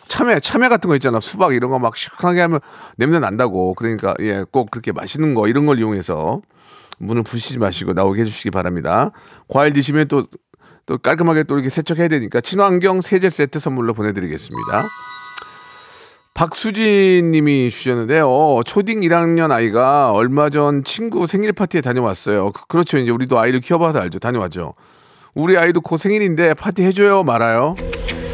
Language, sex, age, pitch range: Korean, male, 40-59, 125-180 Hz